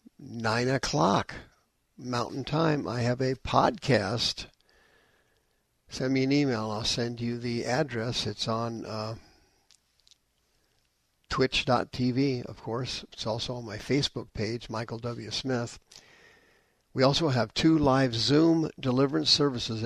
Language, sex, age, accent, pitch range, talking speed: English, male, 60-79, American, 115-135 Hz, 120 wpm